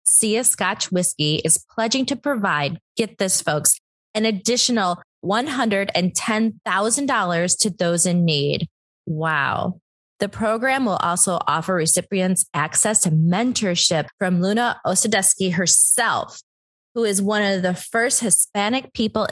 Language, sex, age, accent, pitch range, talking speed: English, female, 20-39, American, 170-220 Hz, 120 wpm